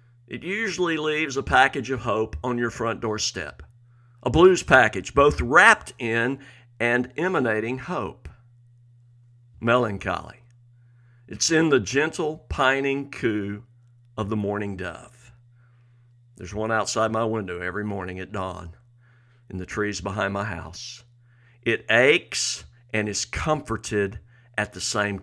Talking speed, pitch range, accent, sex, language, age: 130 wpm, 110-125 Hz, American, male, English, 60-79